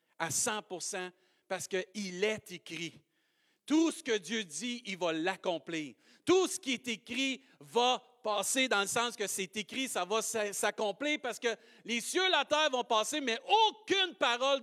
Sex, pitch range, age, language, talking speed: male, 225-300 Hz, 50-69, French, 170 wpm